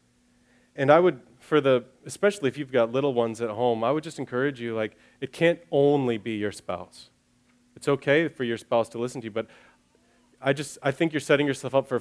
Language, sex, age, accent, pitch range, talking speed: English, male, 30-49, American, 110-140 Hz, 220 wpm